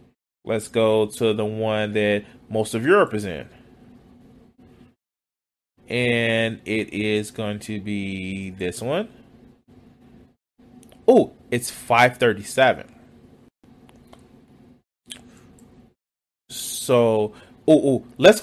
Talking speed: 70 wpm